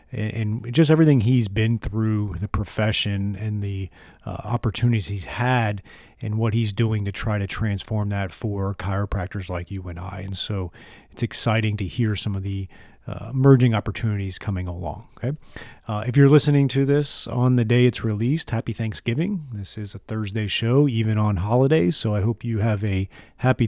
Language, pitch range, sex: English, 105-125 Hz, male